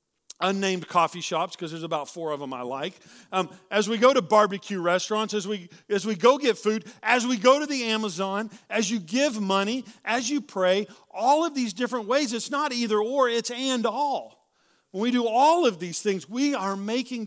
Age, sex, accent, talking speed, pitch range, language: 40-59, male, American, 210 wpm, 175-235 Hz, English